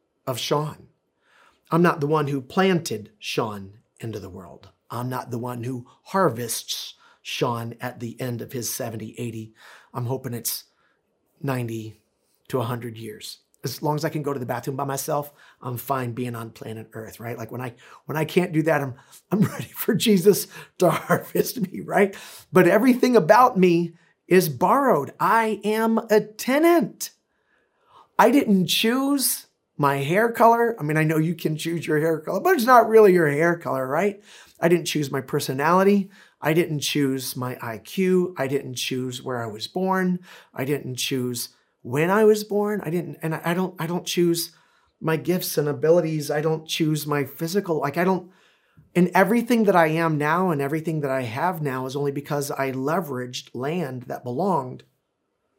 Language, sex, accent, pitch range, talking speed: English, male, American, 130-185 Hz, 180 wpm